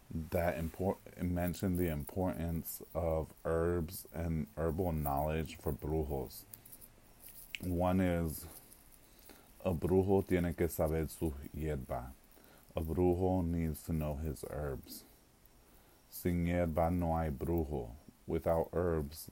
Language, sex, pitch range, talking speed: English, male, 75-90 Hz, 110 wpm